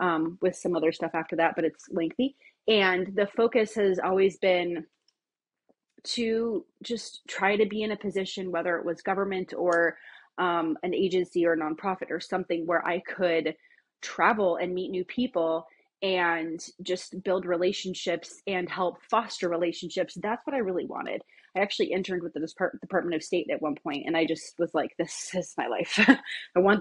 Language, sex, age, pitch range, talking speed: English, female, 30-49, 170-205 Hz, 180 wpm